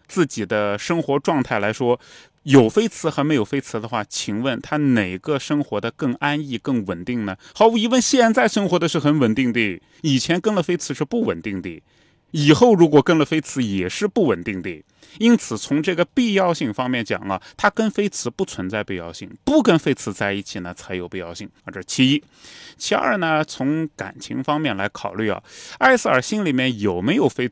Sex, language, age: male, Chinese, 20-39